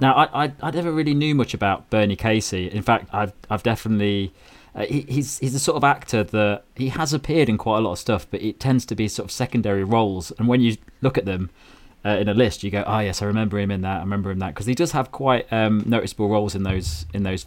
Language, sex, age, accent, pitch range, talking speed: English, male, 20-39, British, 100-120 Hz, 270 wpm